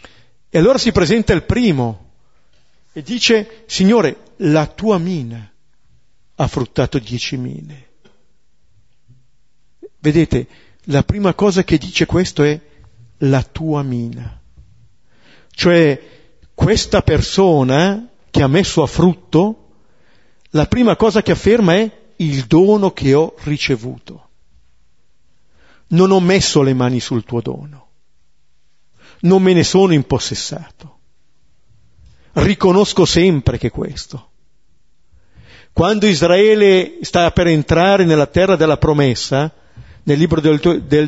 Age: 50-69